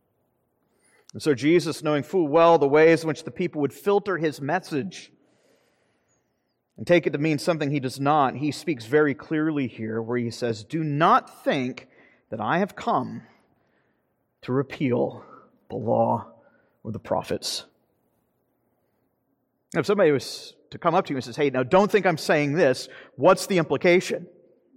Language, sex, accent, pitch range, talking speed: English, male, American, 145-195 Hz, 165 wpm